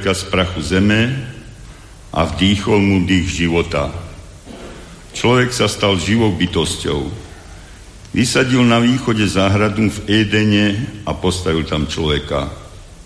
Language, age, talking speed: Slovak, 60-79, 105 wpm